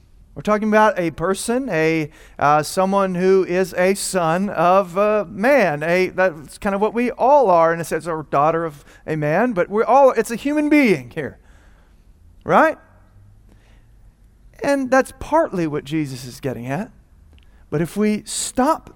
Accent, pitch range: American, 135-200 Hz